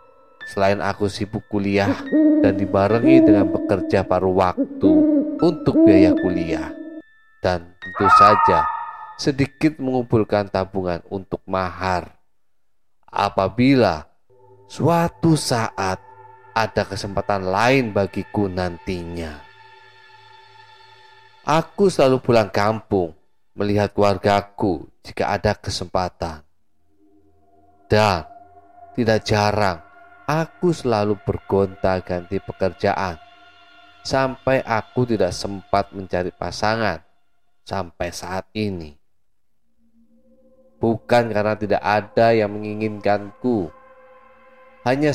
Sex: male